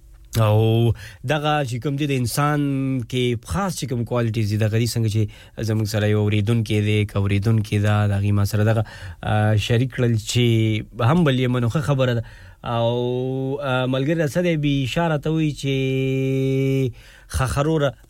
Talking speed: 145 wpm